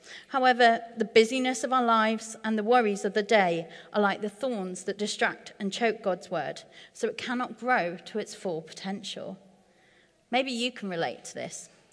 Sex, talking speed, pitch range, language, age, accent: female, 180 wpm, 185-235 Hz, English, 40-59, British